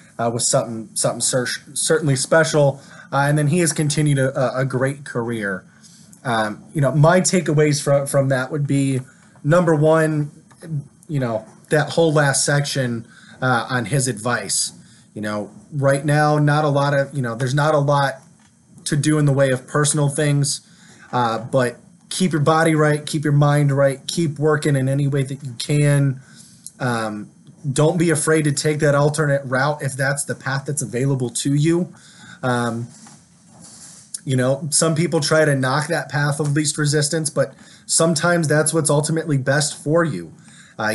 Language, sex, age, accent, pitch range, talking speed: English, male, 20-39, American, 135-155 Hz, 175 wpm